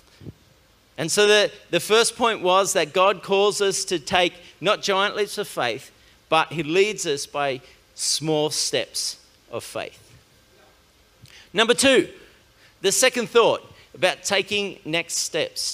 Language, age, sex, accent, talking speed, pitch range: English, 40-59, male, Australian, 135 wpm, 175-225 Hz